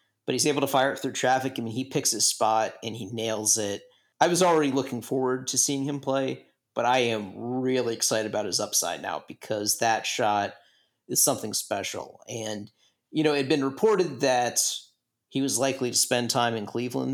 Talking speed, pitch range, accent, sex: 205 wpm, 115-140 Hz, American, male